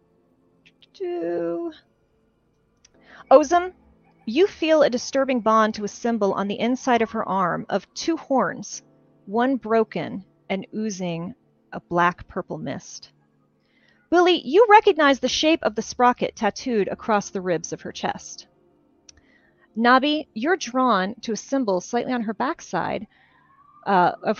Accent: American